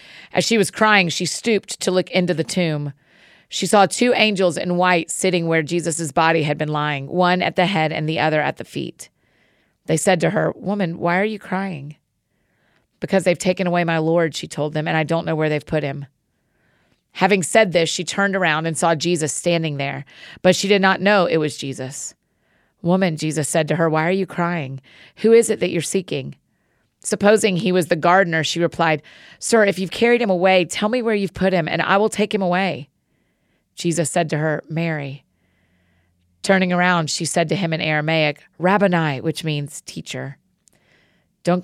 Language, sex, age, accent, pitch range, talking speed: English, female, 30-49, American, 155-190 Hz, 195 wpm